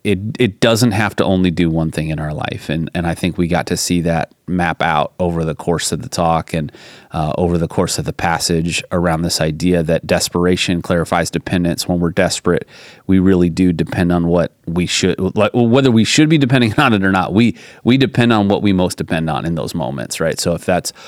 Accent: American